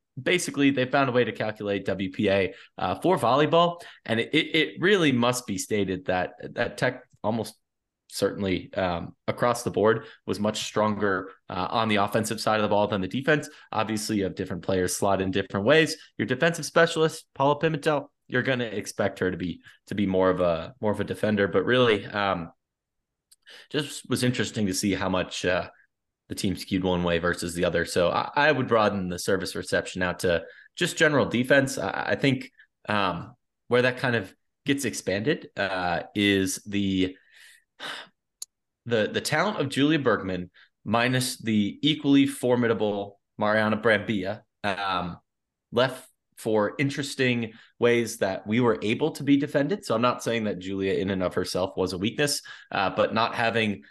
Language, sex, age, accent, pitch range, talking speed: English, male, 20-39, American, 95-130 Hz, 175 wpm